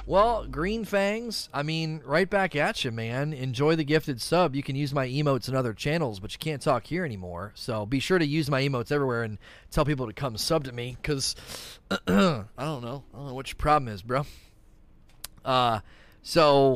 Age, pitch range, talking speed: 30-49, 120-165 Hz, 210 wpm